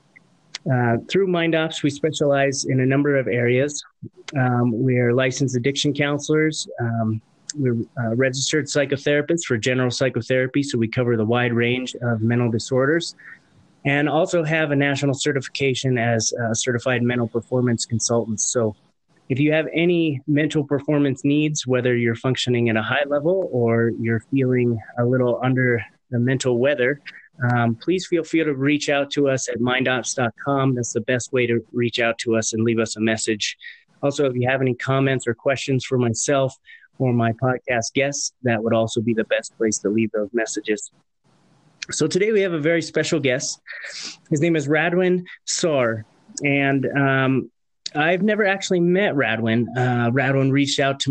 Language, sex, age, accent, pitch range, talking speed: English, male, 30-49, American, 120-145 Hz, 170 wpm